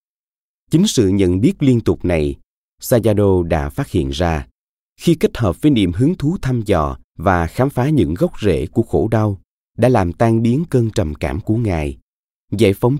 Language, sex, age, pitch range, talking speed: Vietnamese, male, 20-39, 80-115 Hz, 190 wpm